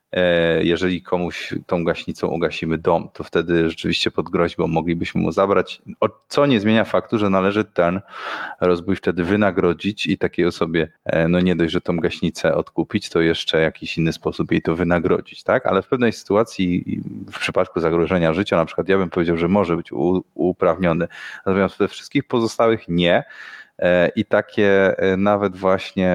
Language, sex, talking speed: Polish, male, 155 wpm